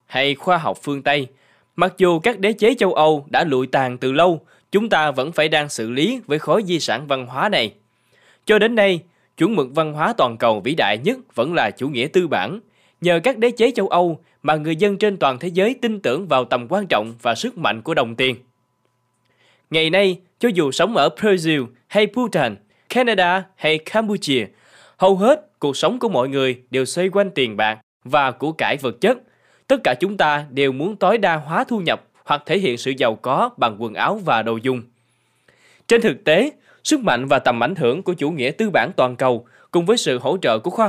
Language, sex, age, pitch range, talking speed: Vietnamese, male, 20-39, 125-195 Hz, 220 wpm